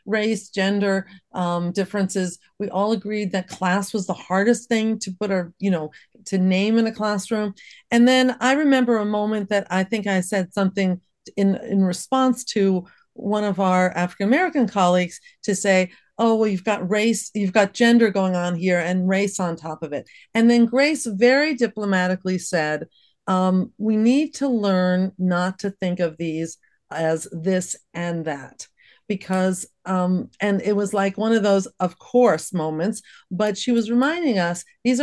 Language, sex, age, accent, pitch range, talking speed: English, female, 40-59, American, 185-235 Hz, 175 wpm